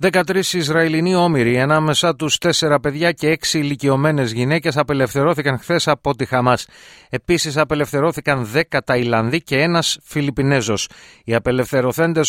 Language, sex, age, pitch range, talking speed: Greek, male, 30-49, 115-150 Hz, 120 wpm